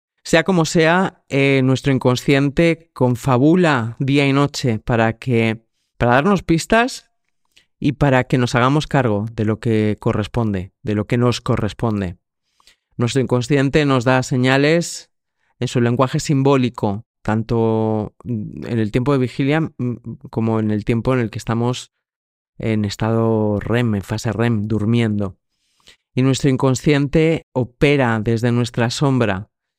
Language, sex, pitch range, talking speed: Spanish, male, 115-150 Hz, 135 wpm